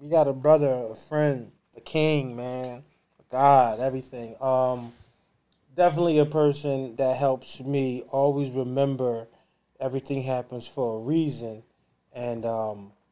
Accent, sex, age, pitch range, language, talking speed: American, male, 20-39, 115-135 Hz, English, 130 wpm